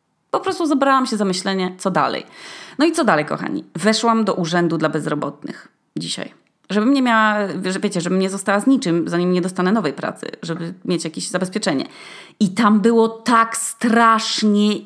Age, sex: 20-39, female